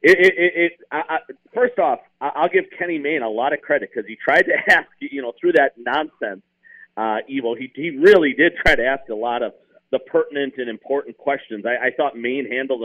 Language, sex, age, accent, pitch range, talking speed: English, male, 40-59, American, 115-165 Hz, 225 wpm